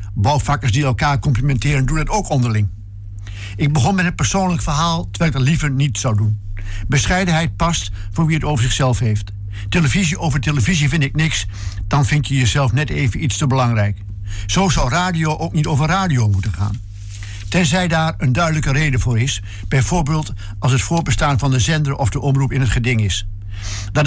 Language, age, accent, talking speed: Dutch, 60-79, Dutch, 185 wpm